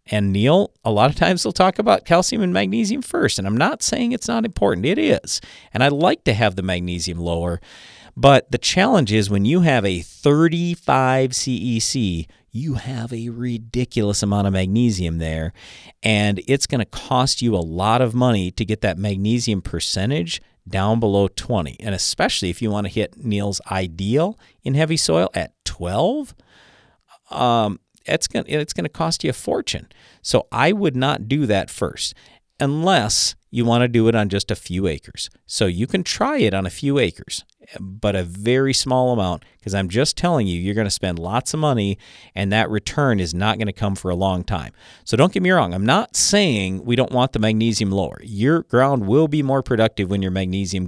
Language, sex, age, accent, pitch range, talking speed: English, male, 40-59, American, 95-140 Hz, 200 wpm